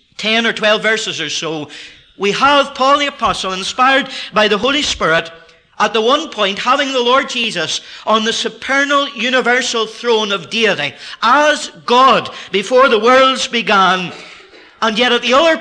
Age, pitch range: 50-69, 185-255 Hz